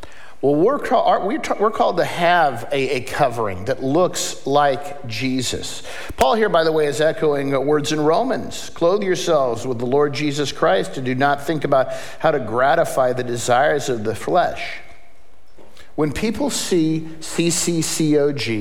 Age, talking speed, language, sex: 50-69, 145 wpm, English, male